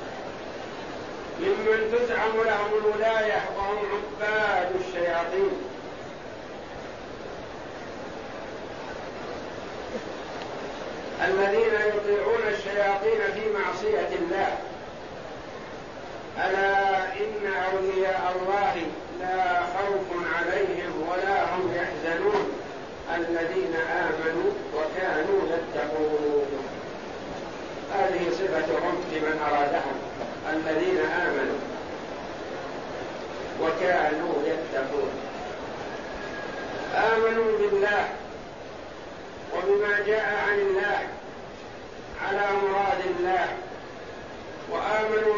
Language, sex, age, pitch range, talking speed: Arabic, male, 60-79, 185-215 Hz, 60 wpm